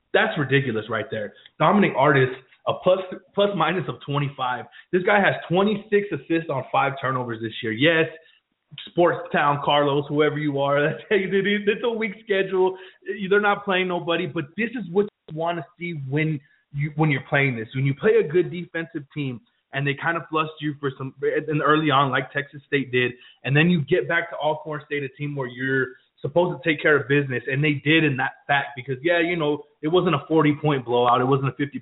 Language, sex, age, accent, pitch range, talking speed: English, male, 20-39, American, 130-170 Hz, 215 wpm